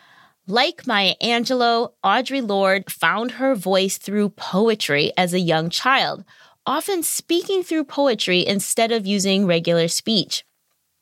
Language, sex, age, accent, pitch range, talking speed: English, female, 20-39, American, 185-250 Hz, 125 wpm